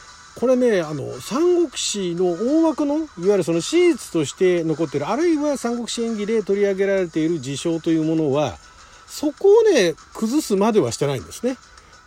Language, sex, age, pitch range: Japanese, male, 40-59, 150-245 Hz